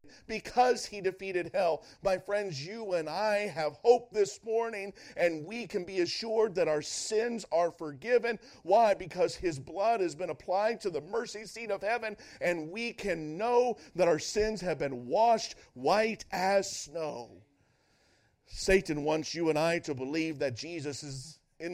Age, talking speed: 50-69, 165 wpm